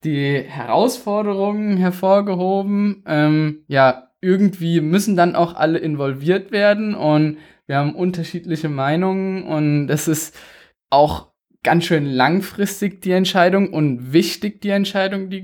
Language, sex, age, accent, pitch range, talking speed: German, male, 20-39, German, 155-190 Hz, 120 wpm